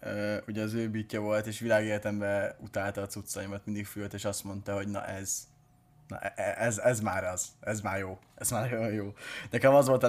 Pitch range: 110-135 Hz